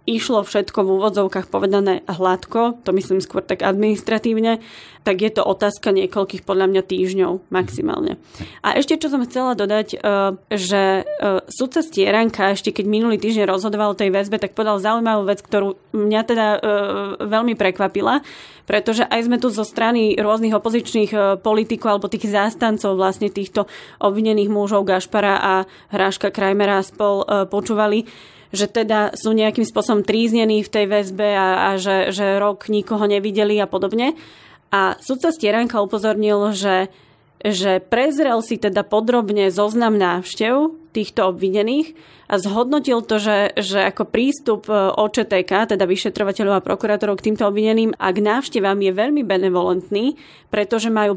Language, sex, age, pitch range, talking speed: Slovak, female, 20-39, 195-225 Hz, 145 wpm